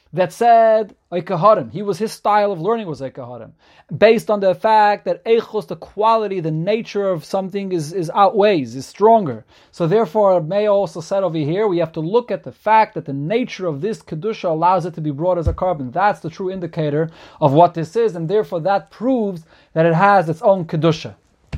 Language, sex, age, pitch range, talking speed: English, male, 30-49, 160-205 Hz, 210 wpm